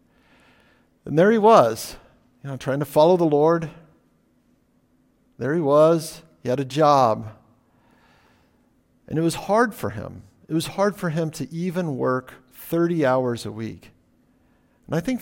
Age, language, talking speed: 50-69, English, 155 wpm